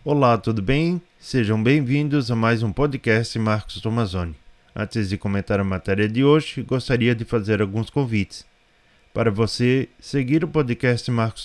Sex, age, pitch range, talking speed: male, 20-39, 105-135 Hz, 150 wpm